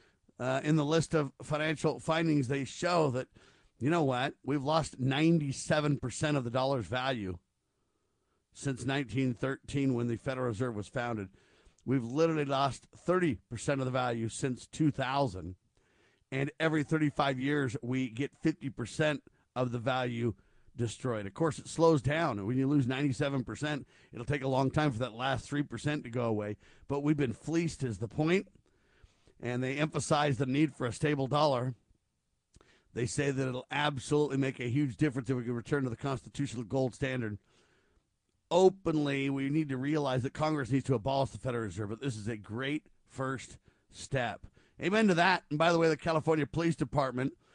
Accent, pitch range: American, 125-150 Hz